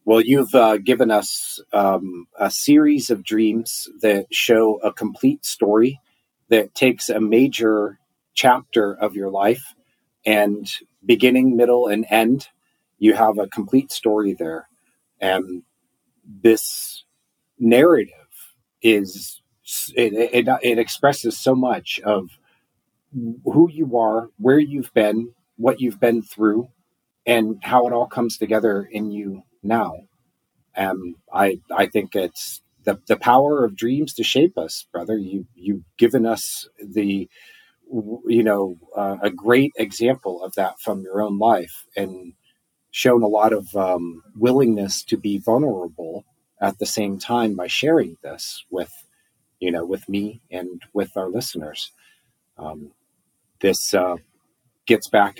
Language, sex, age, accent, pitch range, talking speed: English, male, 40-59, American, 100-120 Hz, 140 wpm